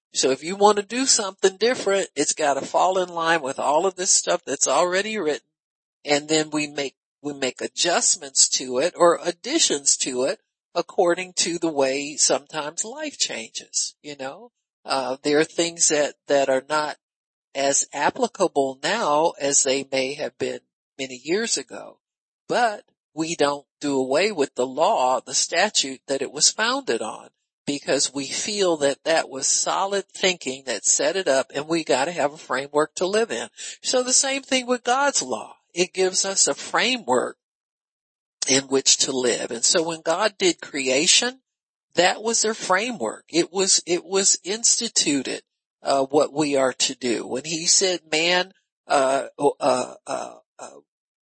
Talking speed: 170 wpm